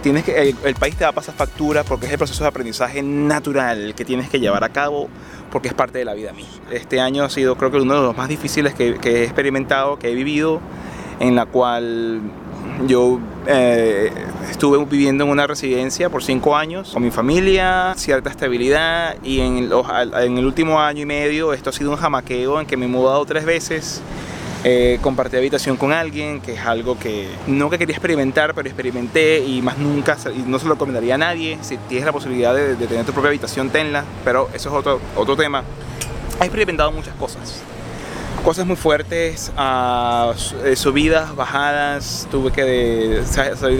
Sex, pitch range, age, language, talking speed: male, 125-150 Hz, 20-39, Spanish, 195 wpm